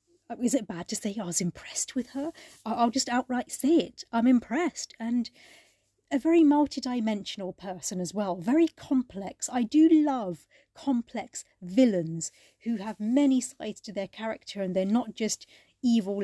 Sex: female